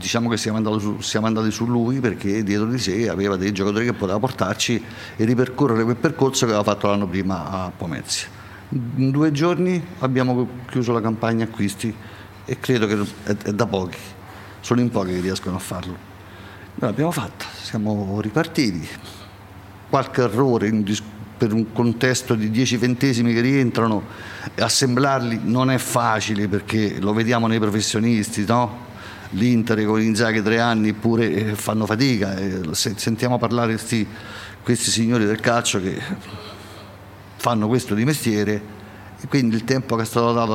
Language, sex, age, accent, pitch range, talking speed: Italian, male, 50-69, native, 100-120 Hz, 155 wpm